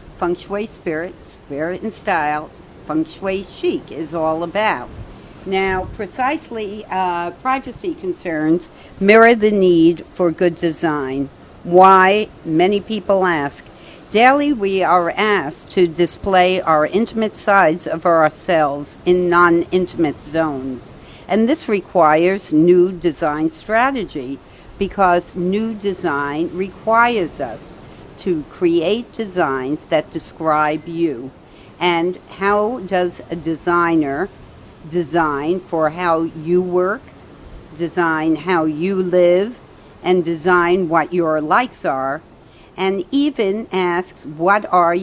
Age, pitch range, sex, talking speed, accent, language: 60-79, 160-200 Hz, female, 110 wpm, American, English